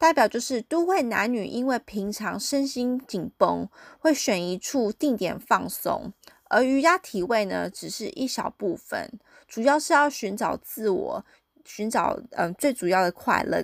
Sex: female